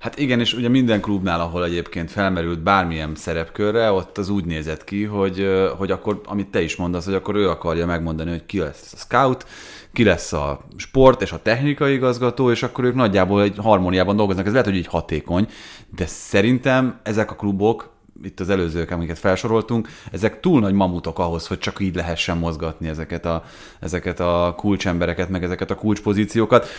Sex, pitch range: male, 85-110 Hz